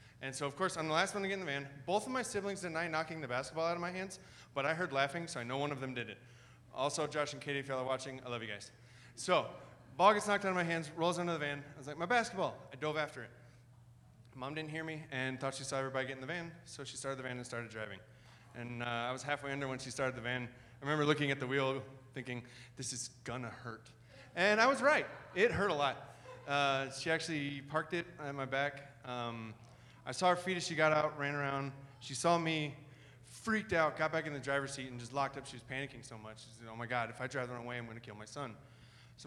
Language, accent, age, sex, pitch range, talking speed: English, American, 20-39, male, 125-160 Hz, 270 wpm